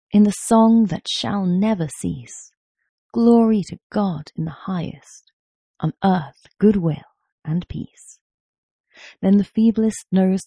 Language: English